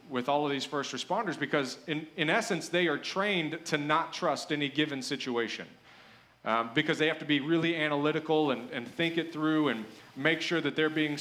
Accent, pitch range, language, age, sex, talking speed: American, 135-165 Hz, English, 40-59, male, 205 wpm